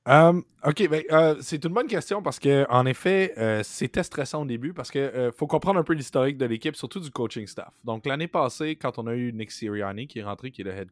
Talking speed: 260 wpm